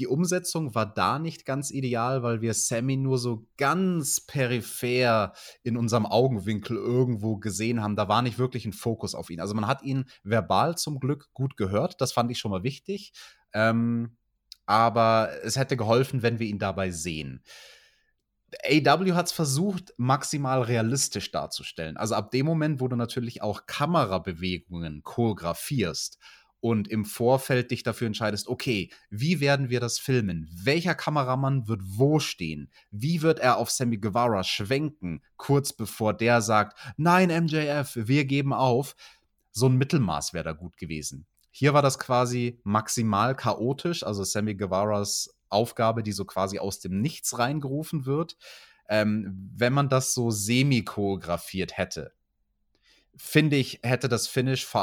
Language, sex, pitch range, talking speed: German, male, 105-135 Hz, 155 wpm